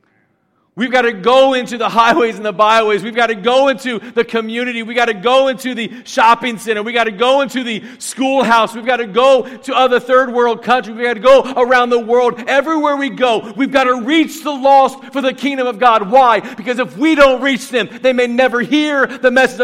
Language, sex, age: English, male, 50-69